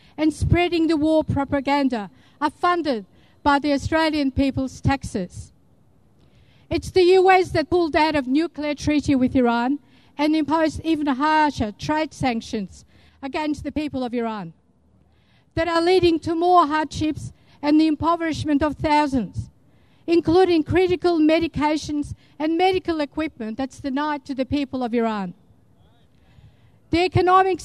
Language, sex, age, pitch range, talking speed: English, female, 50-69, 260-320 Hz, 130 wpm